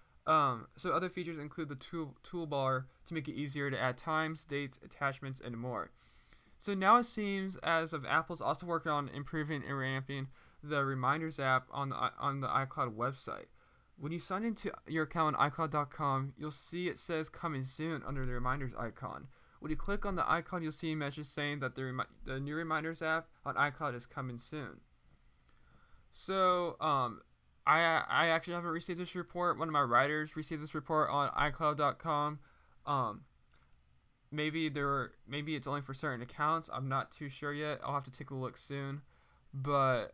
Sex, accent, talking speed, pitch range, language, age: male, American, 185 wpm, 130-155 Hz, English, 10-29